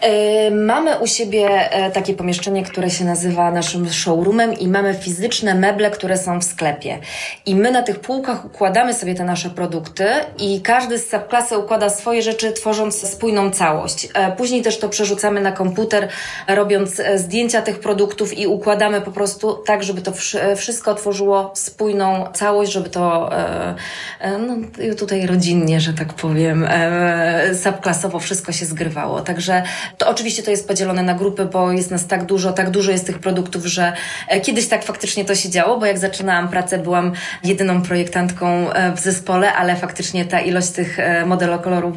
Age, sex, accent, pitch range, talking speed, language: 20-39, female, native, 175-205 Hz, 160 wpm, Polish